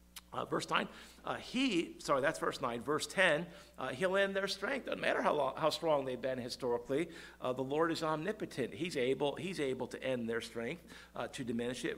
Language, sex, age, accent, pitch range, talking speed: English, male, 50-69, American, 120-145 Hz, 210 wpm